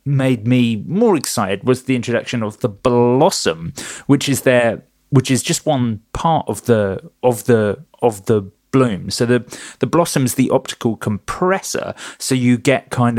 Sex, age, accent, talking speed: male, 30-49, British, 165 wpm